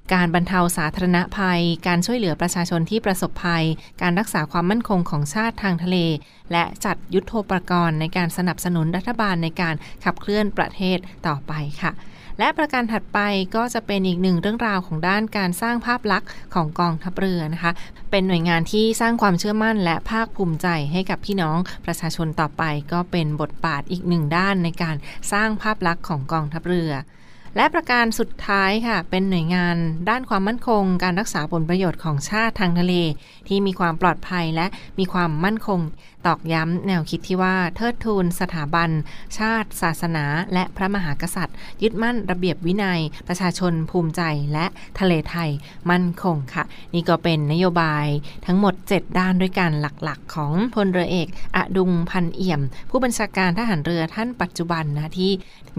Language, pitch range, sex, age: Thai, 165-195 Hz, female, 20-39